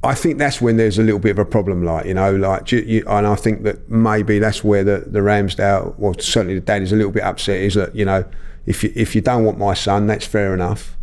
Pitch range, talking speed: 100-115 Hz, 260 wpm